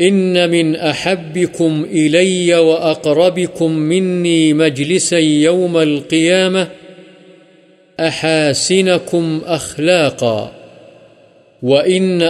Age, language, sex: 50-69, Urdu, male